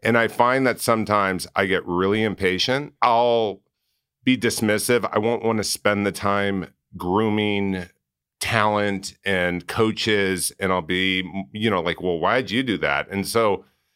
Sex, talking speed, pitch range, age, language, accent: male, 155 wpm, 85-110 Hz, 40-59, English, American